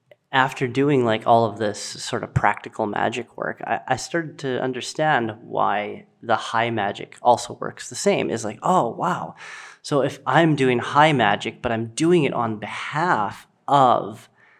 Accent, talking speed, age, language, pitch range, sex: American, 170 wpm, 30-49, English, 115-145 Hz, male